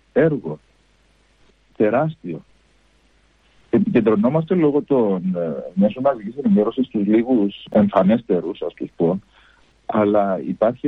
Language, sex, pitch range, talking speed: Greek, male, 105-155 Hz, 90 wpm